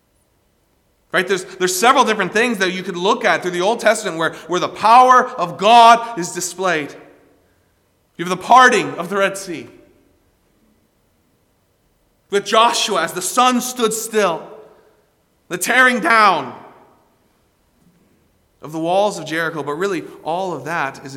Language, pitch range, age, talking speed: English, 110-180 Hz, 30-49, 145 wpm